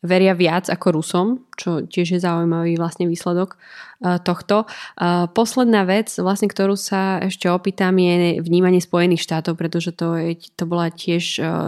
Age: 20-39